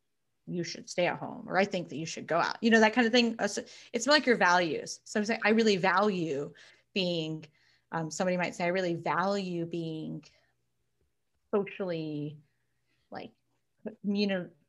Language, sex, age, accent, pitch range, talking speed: English, female, 30-49, American, 165-225 Hz, 170 wpm